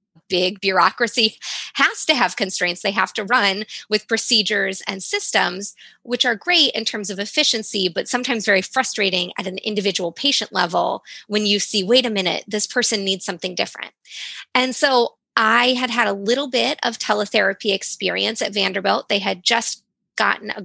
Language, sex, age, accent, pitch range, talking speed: English, female, 20-39, American, 205-260 Hz, 170 wpm